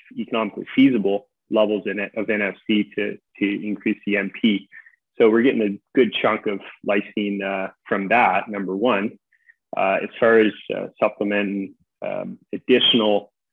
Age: 30-49